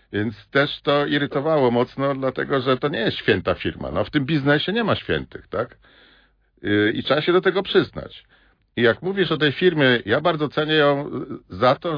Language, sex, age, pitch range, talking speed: Polish, male, 50-69, 110-145 Hz, 195 wpm